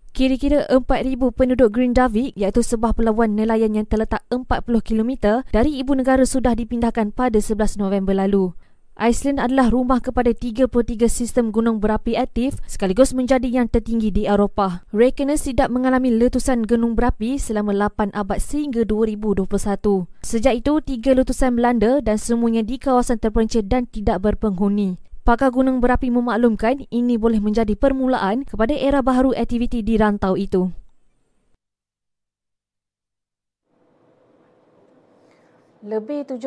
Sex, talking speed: female, 125 wpm